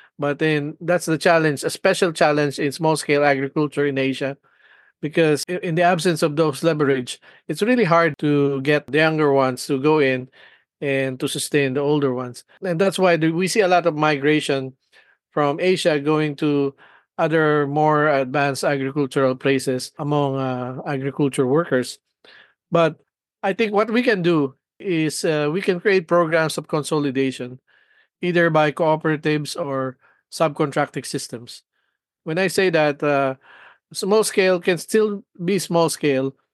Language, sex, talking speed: English, male, 155 wpm